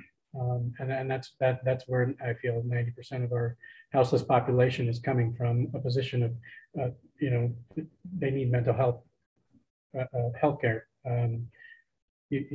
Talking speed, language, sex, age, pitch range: 150 wpm, English, male, 40-59, 120-140 Hz